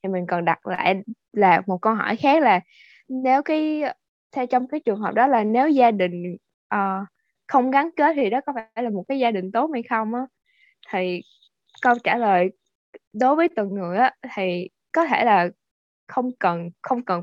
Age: 10-29